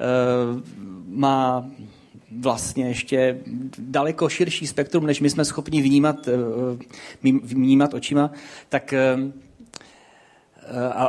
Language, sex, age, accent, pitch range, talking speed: Czech, male, 30-49, native, 120-140 Hz, 80 wpm